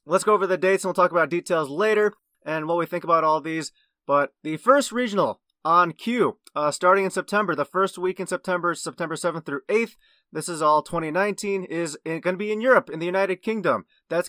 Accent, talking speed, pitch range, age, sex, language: American, 220 wpm, 150-195 Hz, 30-49, male, English